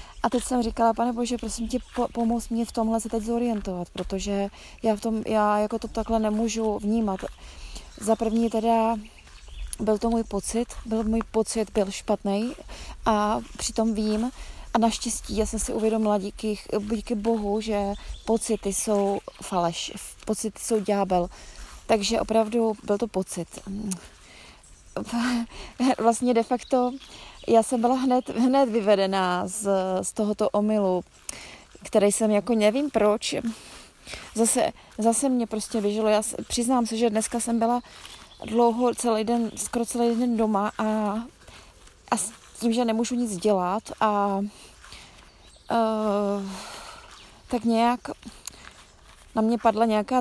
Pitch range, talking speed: 205-235 Hz, 135 wpm